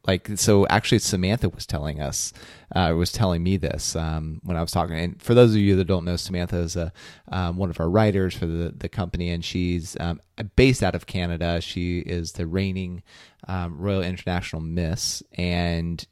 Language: English